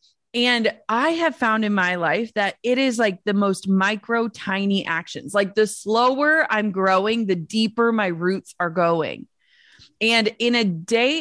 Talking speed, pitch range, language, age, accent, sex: 165 wpm, 190-240 Hz, English, 30-49, American, female